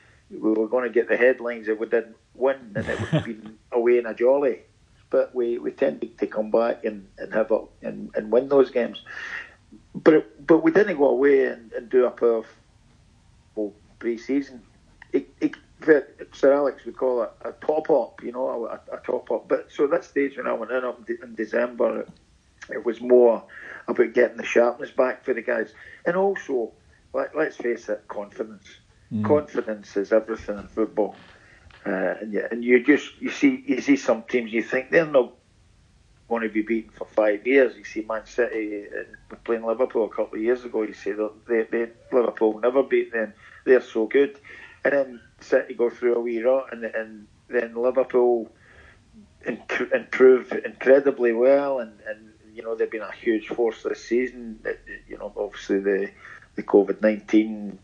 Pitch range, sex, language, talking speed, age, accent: 110-135 Hz, male, English, 185 wpm, 50-69, British